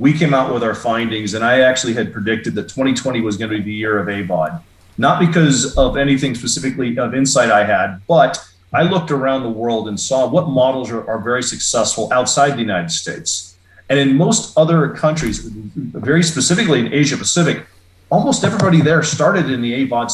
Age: 40-59